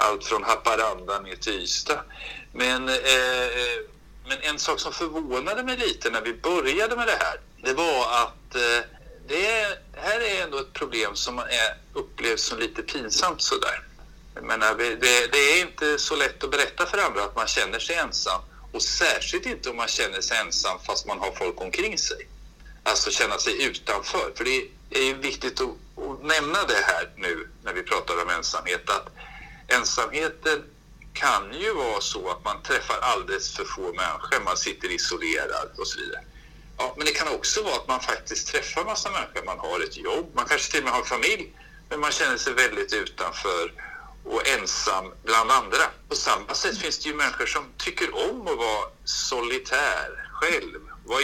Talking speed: 185 wpm